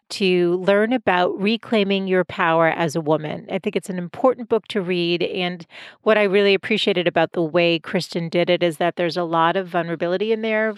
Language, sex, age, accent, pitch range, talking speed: English, female, 40-59, American, 170-215 Hz, 205 wpm